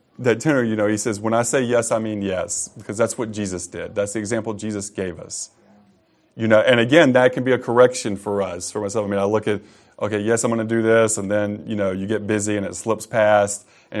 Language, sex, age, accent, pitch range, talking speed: English, male, 30-49, American, 100-115 Hz, 260 wpm